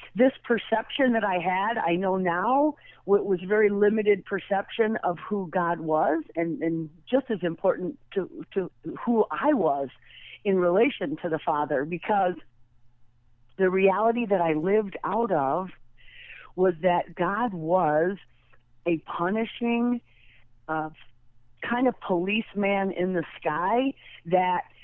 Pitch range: 165-205 Hz